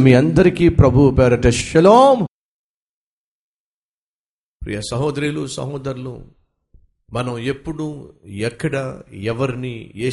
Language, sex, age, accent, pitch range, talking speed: Telugu, male, 50-69, native, 105-160 Hz, 70 wpm